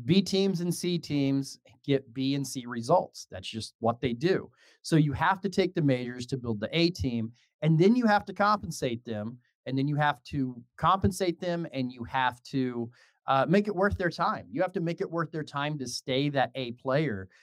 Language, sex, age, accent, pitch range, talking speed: English, male, 30-49, American, 115-150 Hz, 220 wpm